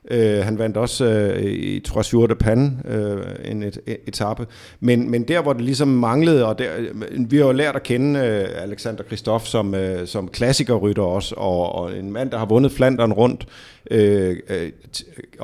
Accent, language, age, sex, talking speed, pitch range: native, Danish, 50-69, male, 195 wpm, 100-125 Hz